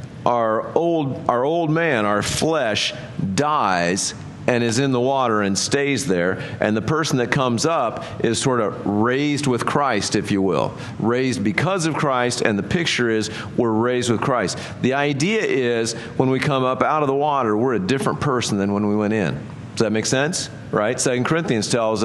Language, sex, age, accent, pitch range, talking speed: English, male, 50-69, American, 115-145 Hz, 195 wpm